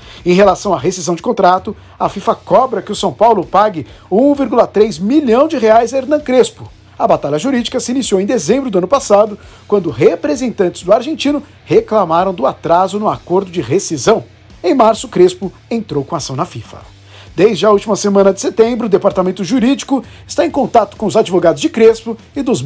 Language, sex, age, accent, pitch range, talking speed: Portuguese, male, 50-69, Brazilian, 180-255 Hz, 185 wpm